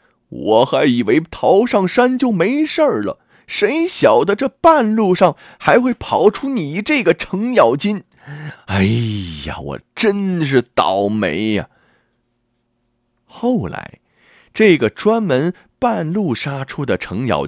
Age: 30-49